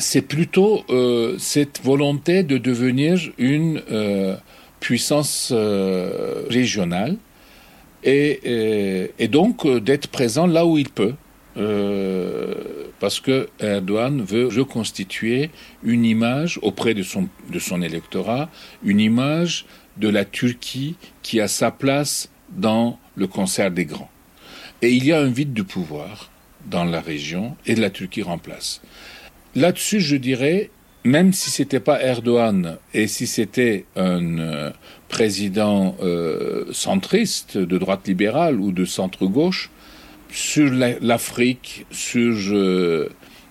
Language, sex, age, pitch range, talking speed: French, male, 60-79, 100-135 Hz, 120 wpm